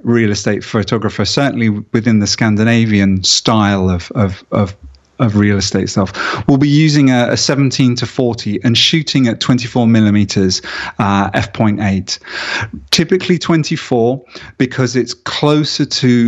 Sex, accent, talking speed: male, British, 135 wpm